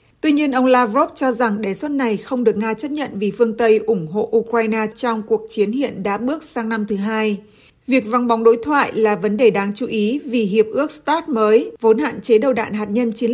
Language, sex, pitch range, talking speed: Vietnamese, female, 215-250 Hz, 245 wpm